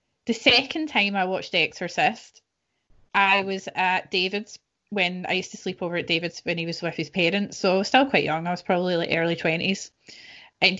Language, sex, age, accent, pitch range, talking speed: English, female, 20-39, British, 190-240 Hz, 210 wpm